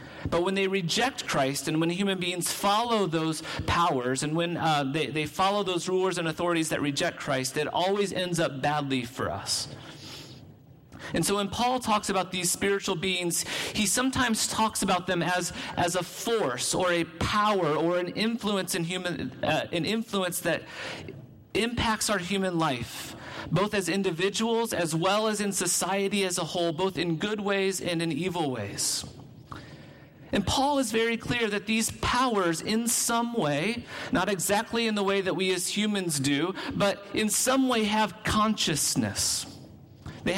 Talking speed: 170 wpm